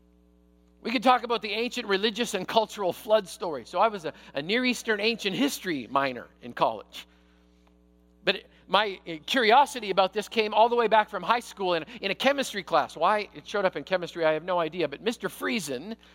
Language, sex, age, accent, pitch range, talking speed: English, male, 50-69, American, 170-230 Hz, 200 wpm